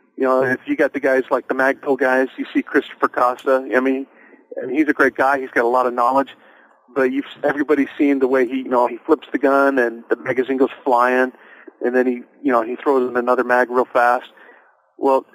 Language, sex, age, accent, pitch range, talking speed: English, male, 40-59, American, 125-140 Hz, 230 wpm